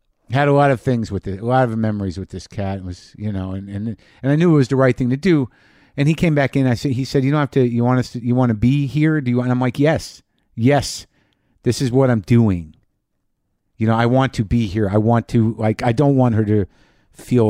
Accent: American